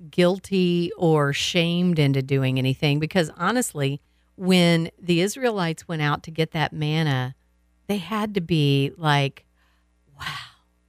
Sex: female